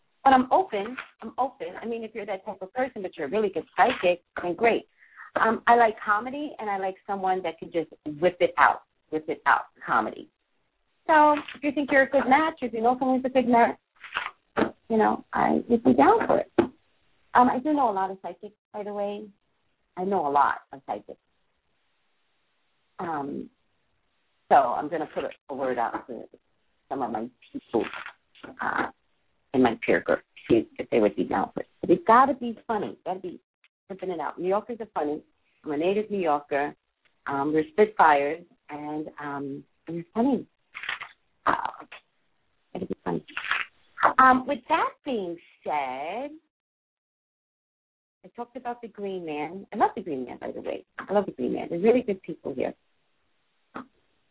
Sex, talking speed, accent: female, 185 wpm, American